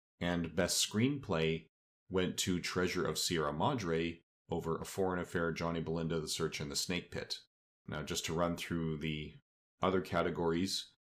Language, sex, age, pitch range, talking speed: English, male, 40-59, 80-100 Hz, 160 wpm